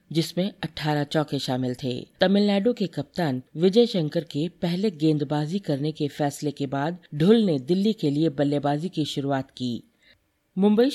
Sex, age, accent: female, 50-69, native